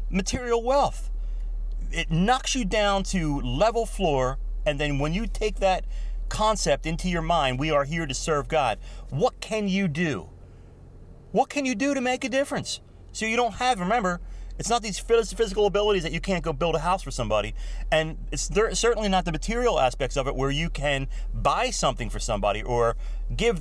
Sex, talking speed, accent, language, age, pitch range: male, 190 wpm, American, English, 30-49, 130-220 Hz